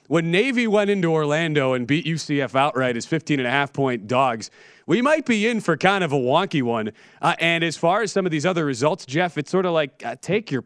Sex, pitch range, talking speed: male, 135-170 Hz, 230 wpm